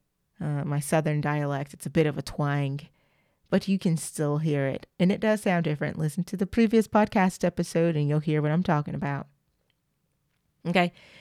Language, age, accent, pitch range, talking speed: English, 30-49, American, 150-195 Hz, 185 wpm